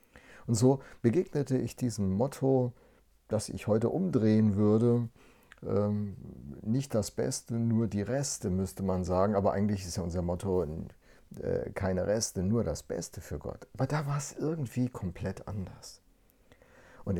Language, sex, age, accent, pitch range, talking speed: German, male, 50-69, German, 95-125 Hz, 145 wpm